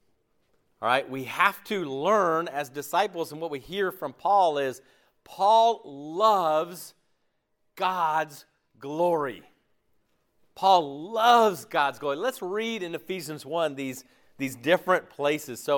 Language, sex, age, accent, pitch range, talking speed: English, male, 40-59, American, 140-185 Hz, 125 wpm